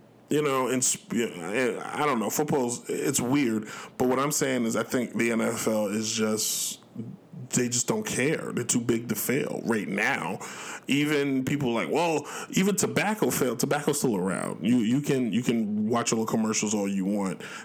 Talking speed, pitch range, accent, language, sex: 185 wpm, 110-130 Hz, American, English, male